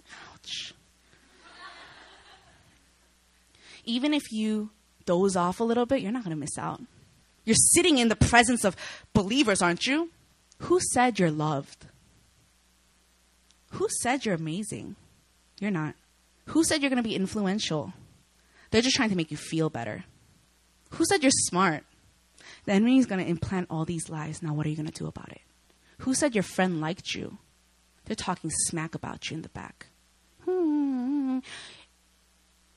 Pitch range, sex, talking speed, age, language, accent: 155-250 Hz, female, 155 wpm, 20-39, English, American